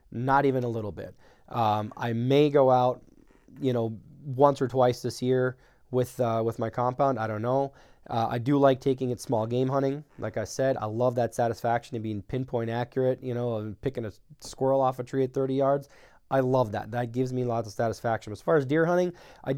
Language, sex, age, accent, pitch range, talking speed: English, male, 20-39, American, 115-135 Hz, 220 wpm